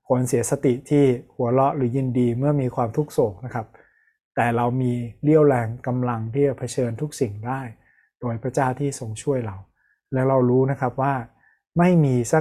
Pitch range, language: 120-140 Hz, Thai